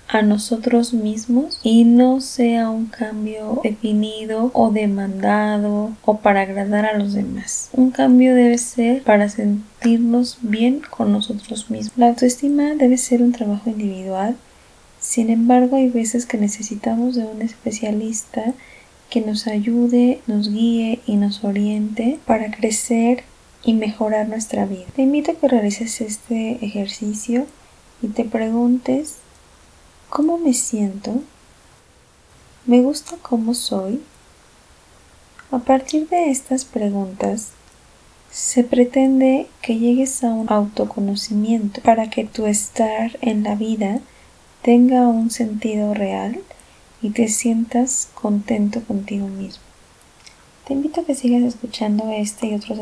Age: 20-39